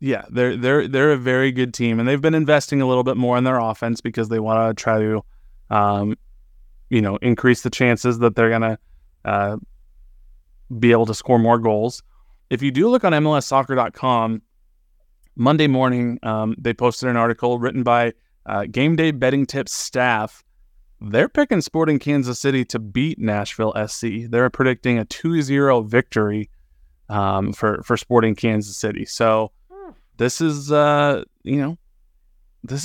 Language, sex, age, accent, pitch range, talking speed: English, male, 20-39, American, 110-130 Hz, 165 wpm